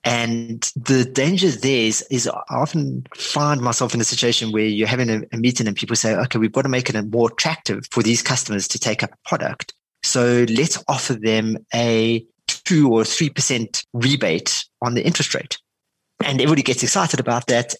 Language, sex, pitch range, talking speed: English, male, 110-135 Hz, 190 wpm